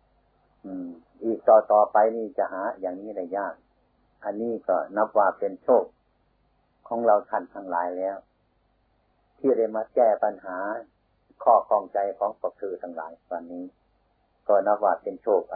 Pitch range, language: 95-110 Hz, Thai